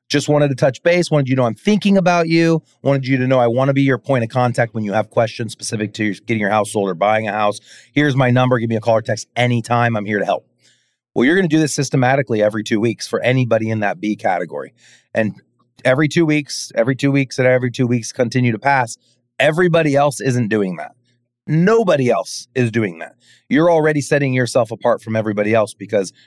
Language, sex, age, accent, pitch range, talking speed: English, male, 30-49, American, 110-135 Hz, 235 wpm